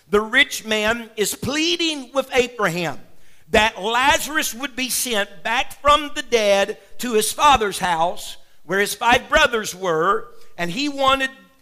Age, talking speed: 50-69, 145 wpm